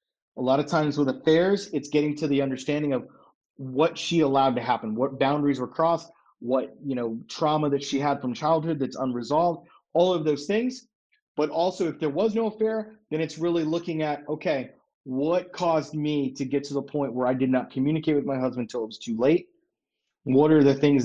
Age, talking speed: 30-49, 210 wpm